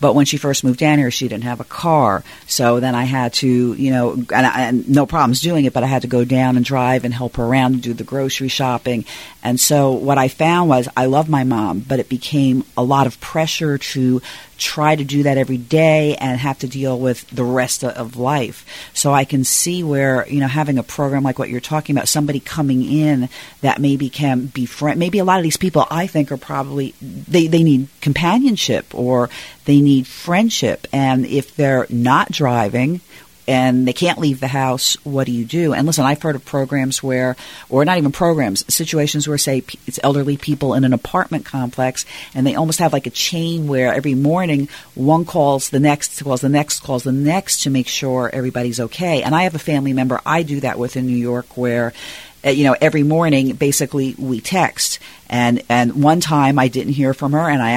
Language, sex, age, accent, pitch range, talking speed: English, female, 40-59, American, 125-150 Hz, 220 wpm